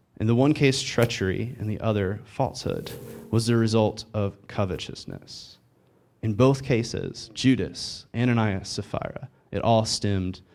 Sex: male